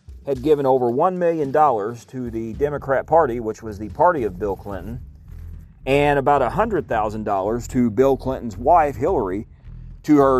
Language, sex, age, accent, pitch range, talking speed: English, male, 40-59, American, 100-130 Hz, 175 wpm